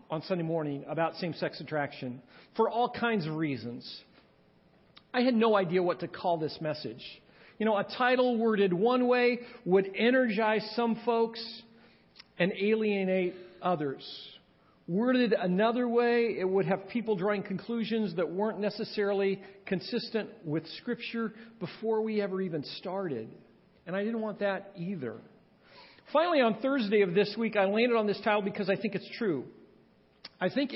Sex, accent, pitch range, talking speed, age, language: male, American, 170-225 Hz, 150 wpm, 50-69, English